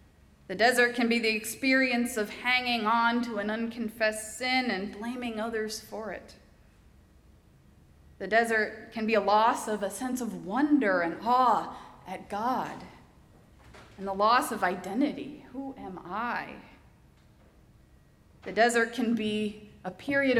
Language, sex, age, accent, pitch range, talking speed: English, female, 30-49, American, 205-250 Hz, 140 wpm